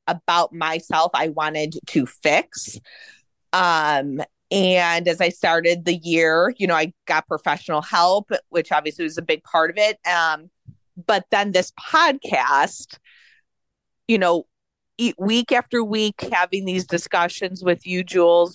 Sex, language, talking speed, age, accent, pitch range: female, English, 140 wpm, 30-49, American, 155-180 Hz